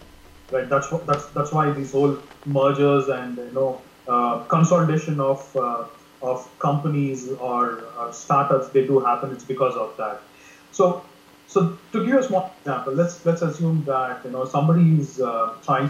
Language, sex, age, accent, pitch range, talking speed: English, male, 30-49, Indian, 130-165 Hz, 170 wpm